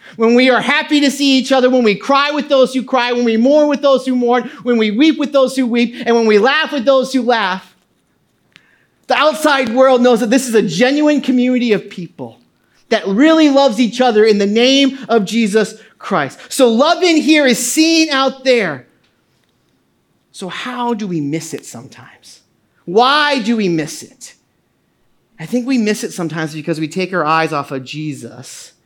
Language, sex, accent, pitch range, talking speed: English, male, American, 185-295 Hz, 195 wpm